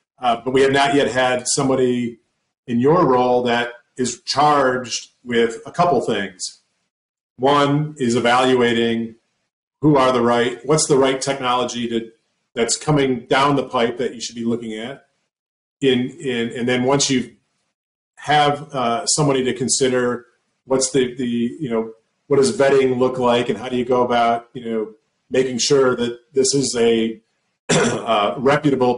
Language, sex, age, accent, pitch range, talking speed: English, male, 40-59, American, 120-140 Hz, 160 wpm